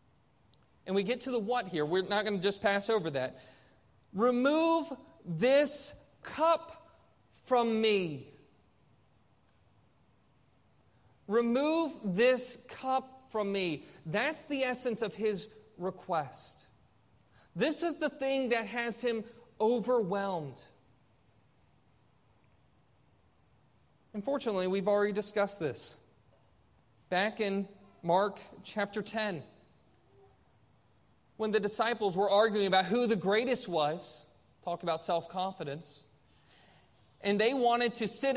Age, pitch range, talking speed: 30-49, 165-240 Hz, 105 wpm